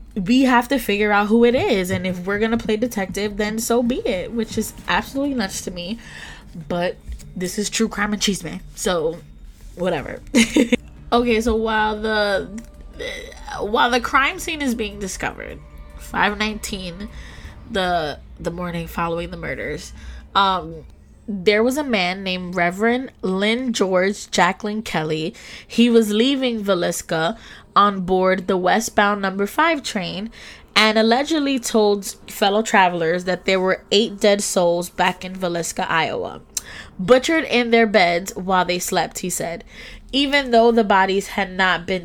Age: 10-29